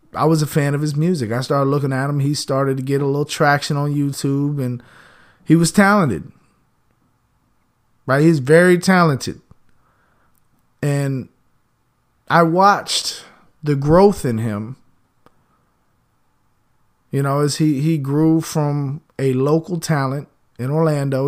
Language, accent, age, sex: English, American, 30-49, male